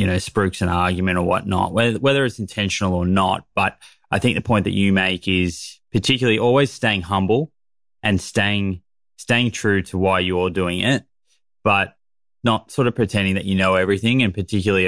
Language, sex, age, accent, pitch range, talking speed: English, male, 20-39, Australian, 95-105 Hz, 190 wpm